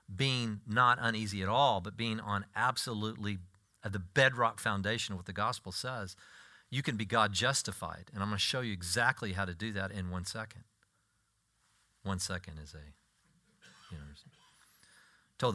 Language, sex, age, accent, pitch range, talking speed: English, male, 40-59, American, 95-125 Hz, 170 wpm